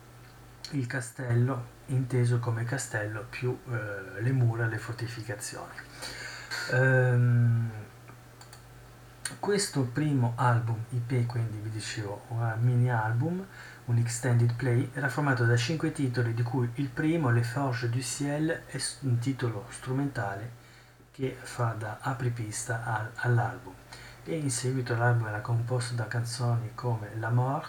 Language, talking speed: Italian, 120 wpm